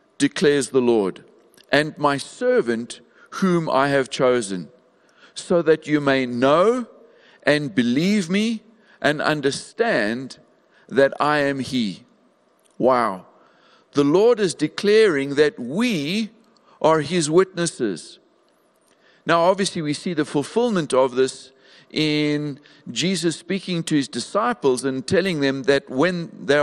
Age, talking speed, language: 60-79, 120 wpm, English